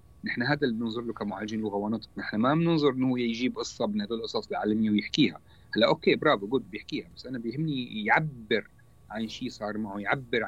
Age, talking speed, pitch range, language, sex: 40-59, 190 wpm, 115-155 Hz, Arabic, male